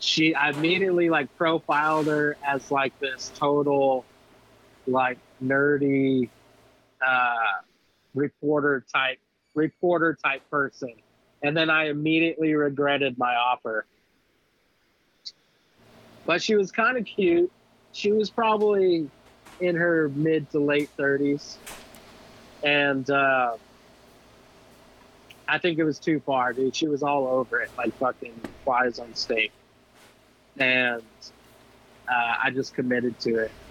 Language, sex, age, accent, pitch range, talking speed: English, male, 30-49, American, 130-155 Hz, 120 wpm